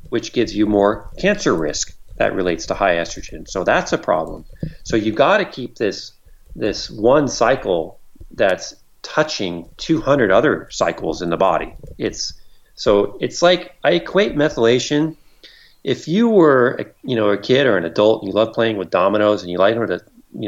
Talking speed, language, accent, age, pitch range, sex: 180 wpm, English, American, 40-59, 100-130 Hz, male